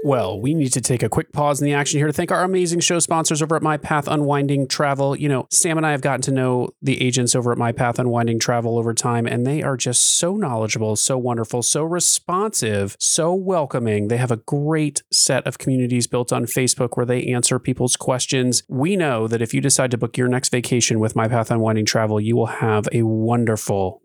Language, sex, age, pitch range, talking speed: English, male, 30-49, 120-155 Hz, 225 wpm